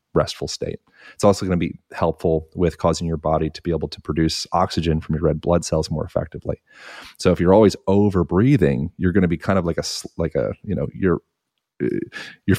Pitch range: 85-100 Hz